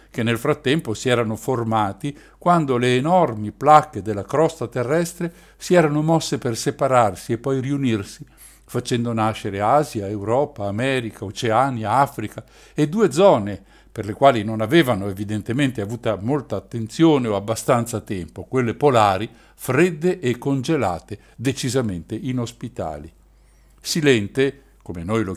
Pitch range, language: 110-155 Hz, Italian